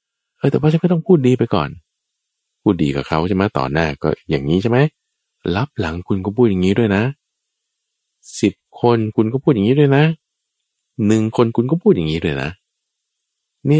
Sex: male